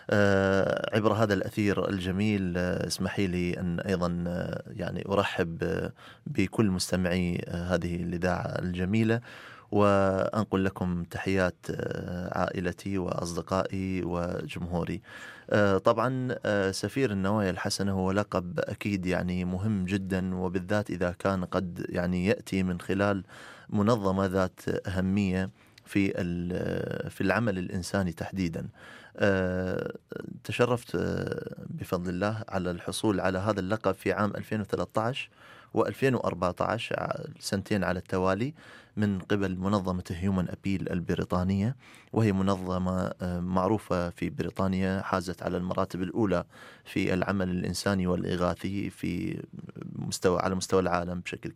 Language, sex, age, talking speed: Arabic, male, 30-49, 100 wpm